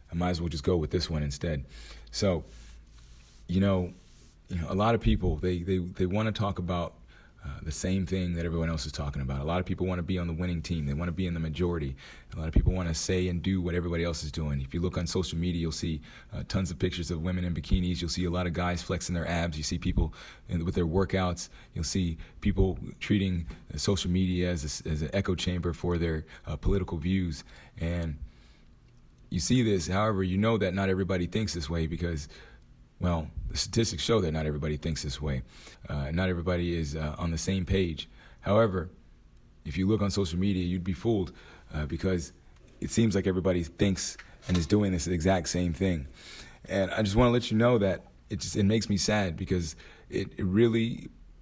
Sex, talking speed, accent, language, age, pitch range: male, 225 wpm, American, English, 30-49, 80-95 Hz